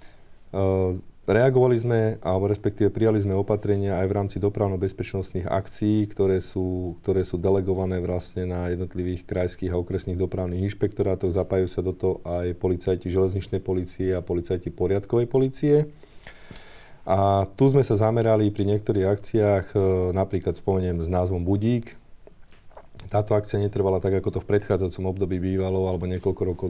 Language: Slovak